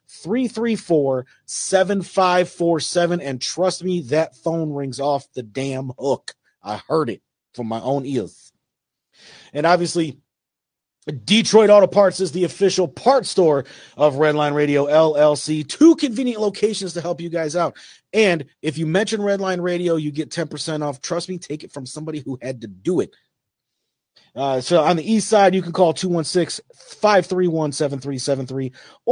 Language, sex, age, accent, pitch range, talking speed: English, male, 40-59, American, 140-185 Hz, 160 wpm